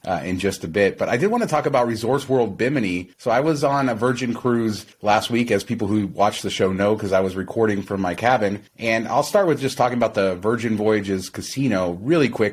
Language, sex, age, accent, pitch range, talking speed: English, male, 30-49, American, 100-120 Hz, 245 wpm